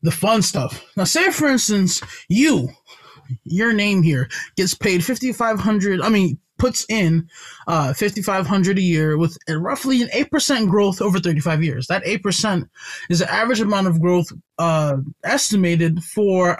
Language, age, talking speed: English, 20-39, 150 wpm